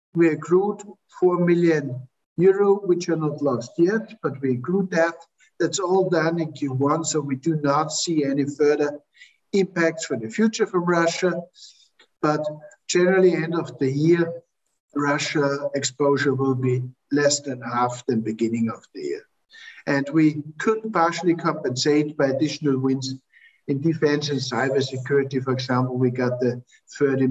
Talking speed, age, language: 150 wpm, 60-79, English